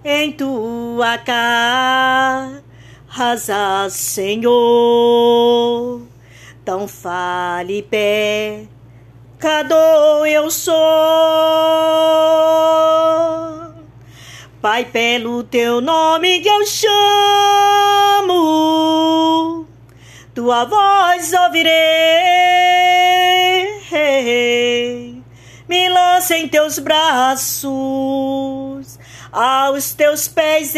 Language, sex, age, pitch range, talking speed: Portuguese, female, 40-59, 235-345 Hz, 55 wpm